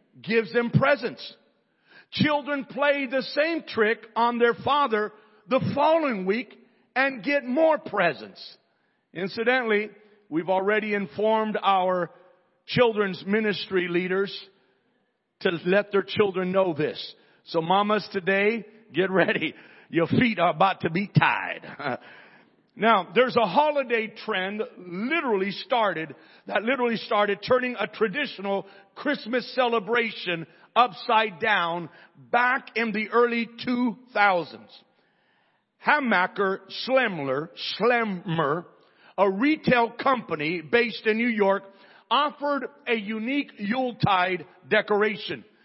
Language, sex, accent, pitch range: English, male, American, 195-245 Hz